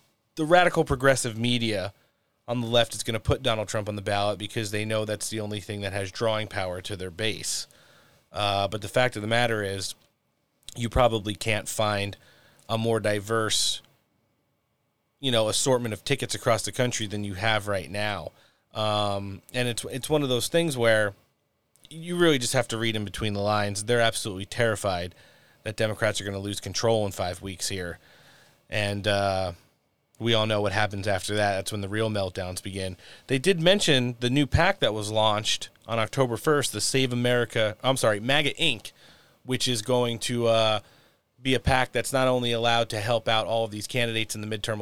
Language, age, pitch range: English, 30-49, 105-125 Hz